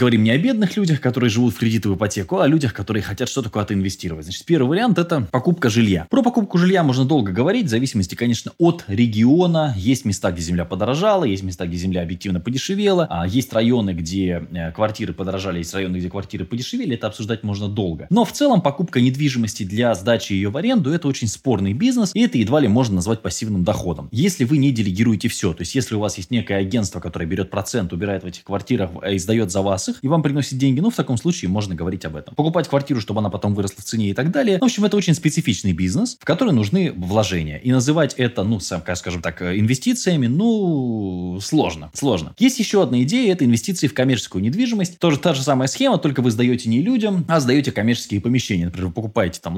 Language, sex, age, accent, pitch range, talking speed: Russian, male, 20-39, native, 100-155 Hz, 215 wpm